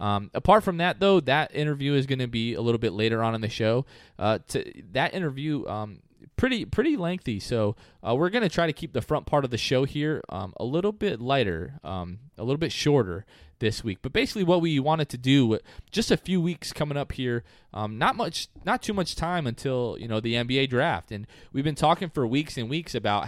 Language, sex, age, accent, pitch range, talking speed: English, male, 20-39, American, 105-145 Hz, 235 wpm